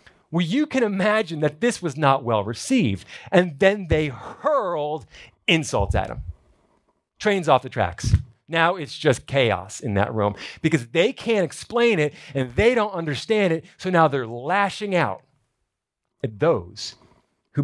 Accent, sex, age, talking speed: American, male, 40-59, 155 wpm